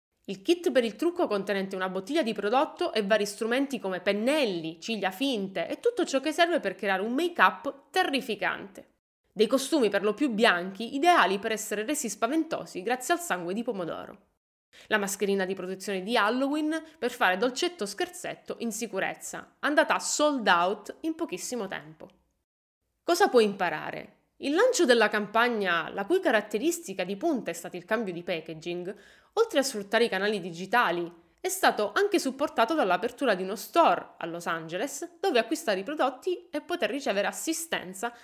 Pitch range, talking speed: 195-305 Hz, 165 wpm